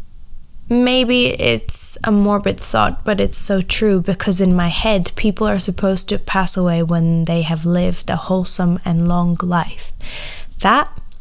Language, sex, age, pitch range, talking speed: English, female, 10-29, 175-210 Hz, 155 wpm